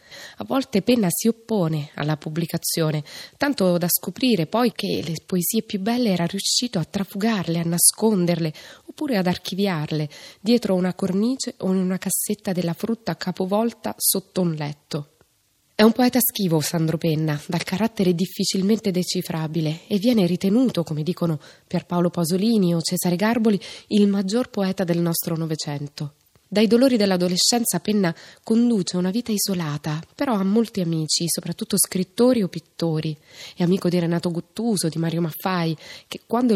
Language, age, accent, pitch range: Italian, 20-39, native, 165-210 Hz